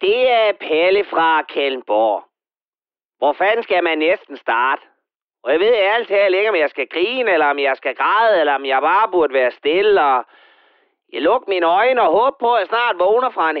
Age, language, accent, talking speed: 30-49, Danish, native, 210 wpm